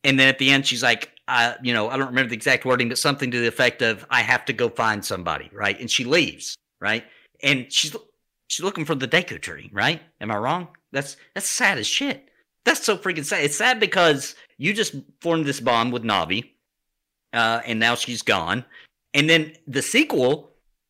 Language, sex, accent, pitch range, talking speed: English, male, American, 120-165 Hz, 210 wpm